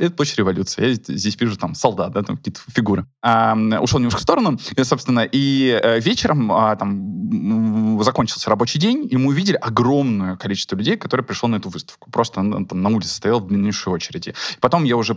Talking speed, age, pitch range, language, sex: 190 wpm, 20-39, 105-135 Hz, Russian, male